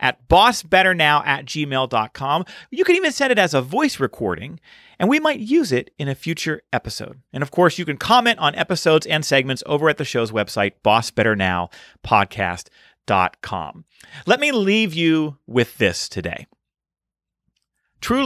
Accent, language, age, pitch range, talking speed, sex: American, English, 40-59, 125-200 Hz, 150 wpm, male